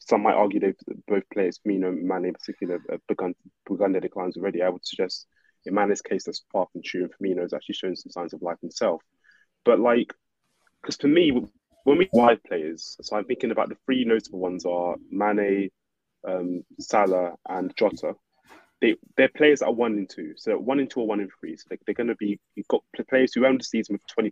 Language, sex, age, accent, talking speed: English, male, 20-39, British, 220 wpm